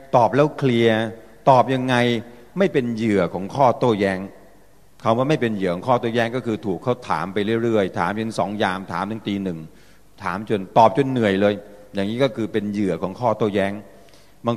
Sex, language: male, Thai